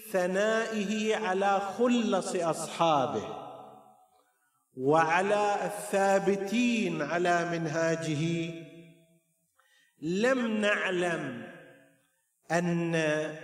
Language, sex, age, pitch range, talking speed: Arabic, male, 50-69, 155-200 Hz, 50 wpm